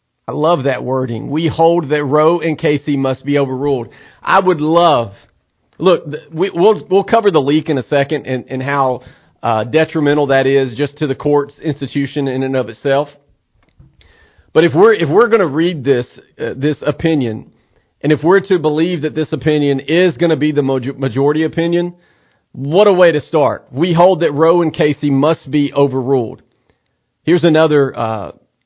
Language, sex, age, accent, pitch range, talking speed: English, male, 40-59, American, 135-170 Hz, 180 wpm